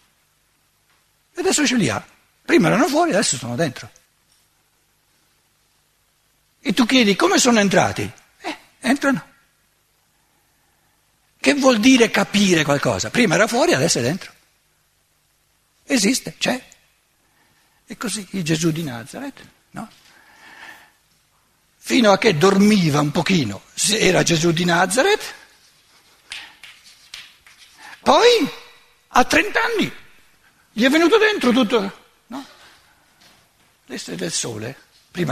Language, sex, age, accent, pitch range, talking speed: Italian, male, 60-79, native, 180-275 Hz, 110 wpm